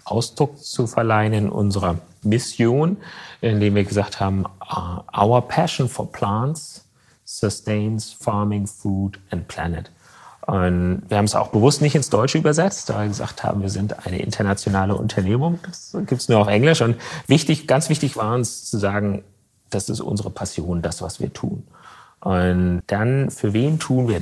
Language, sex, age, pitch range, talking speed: German, male, 40-59, 95-120 Hz, 165 wpm